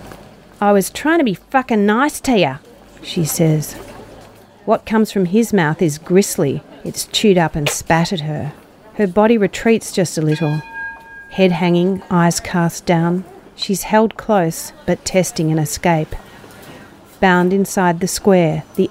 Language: English